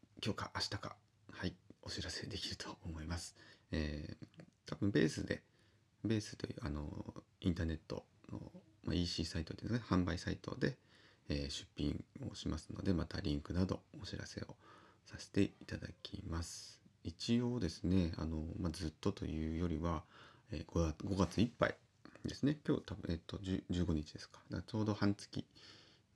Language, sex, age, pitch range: Japanese, male, 30-49, 80-105 Hz